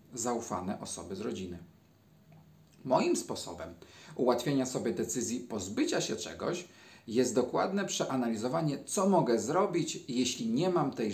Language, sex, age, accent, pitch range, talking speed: Polish, male, 40-59, native, 120-160 Hz, 120 wpm